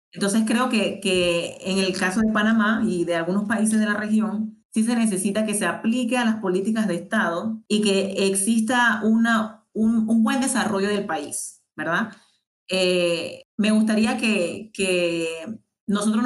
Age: 30-49